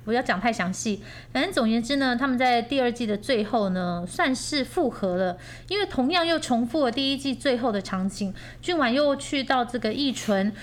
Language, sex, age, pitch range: Chinese, female, 30-49, 195-260 Hz